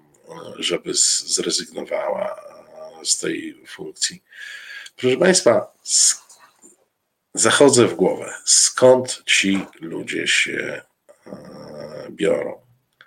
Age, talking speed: 50-69, 70 wpm